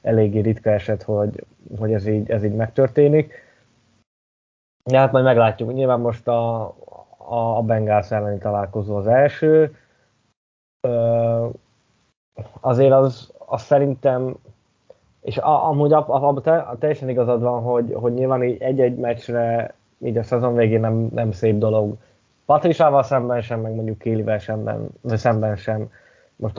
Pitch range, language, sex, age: 110-125 Hz, Hungarian, male, 10-29